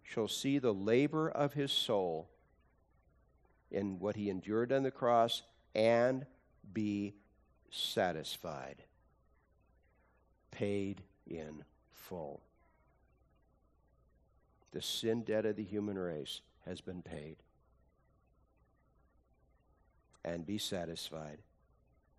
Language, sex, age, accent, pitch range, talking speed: English, male, 60-79, American, 75-115 Hz, 90 wpm